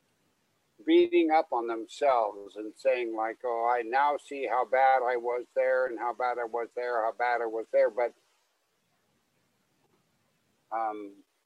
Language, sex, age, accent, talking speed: English, male, 60-79, American, 150 wpm